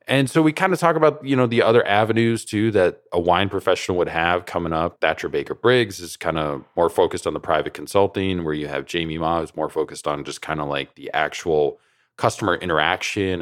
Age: 20-39